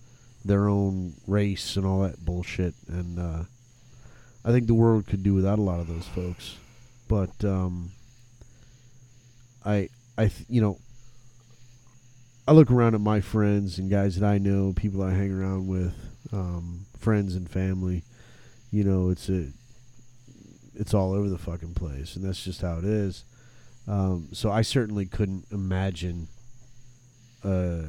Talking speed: 155 wpm